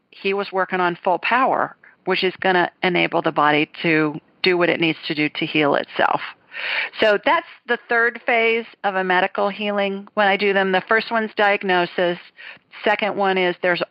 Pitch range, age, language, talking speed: 170-200 Hz, 40-59, English, 190 wpm